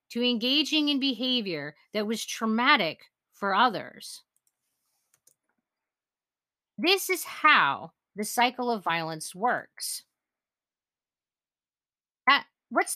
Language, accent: English, American